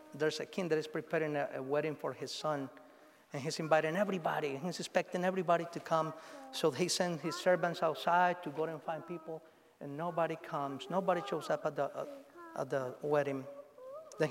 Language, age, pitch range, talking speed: English, 50-69, 150-185 Hz, 190 wpm